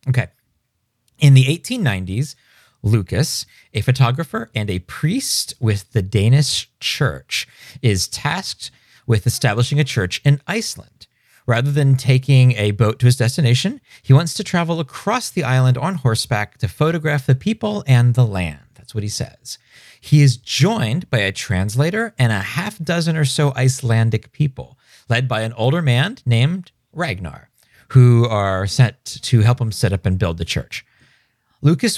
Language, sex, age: English, male, 40-59